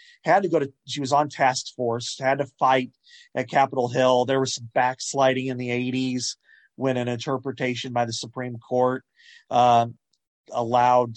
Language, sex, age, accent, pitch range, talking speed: English, male, 40-59, American, 120-145 Hz, 165 wpm